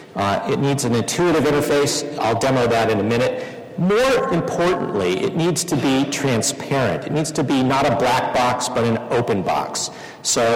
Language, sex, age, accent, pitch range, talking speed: English, male, 50-69, American, 115-145 Hz, 180 wpm